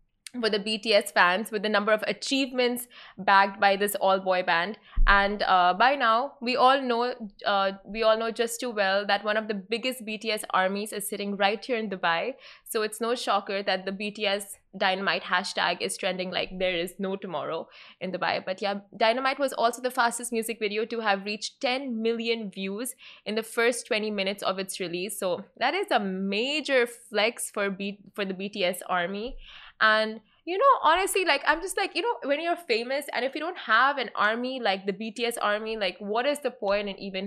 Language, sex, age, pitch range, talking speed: Arabic, female, 20-39, 195-240 Hz, 205 wpm